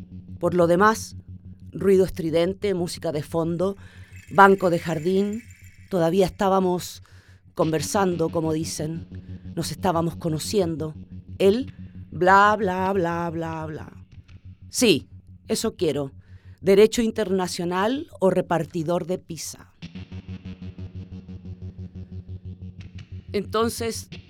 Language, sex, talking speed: Spanish, female, 85 wpm